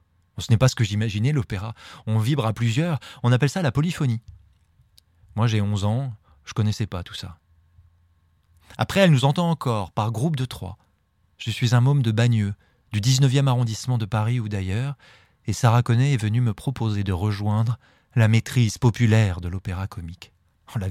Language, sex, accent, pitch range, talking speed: French, male, French, 90-125 Hz, 185 wpm